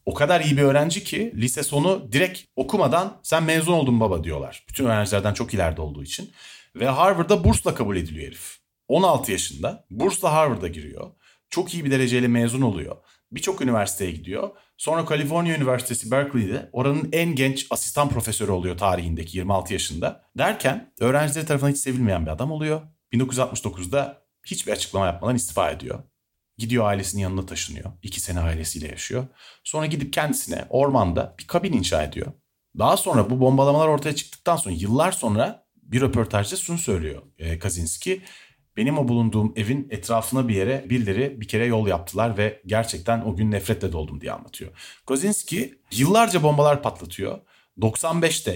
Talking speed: 155 wpm